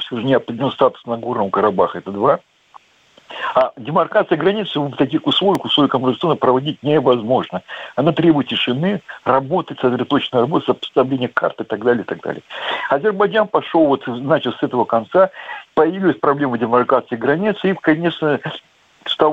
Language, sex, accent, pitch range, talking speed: Russian, male, native, 120-155 Hz, 145 wpm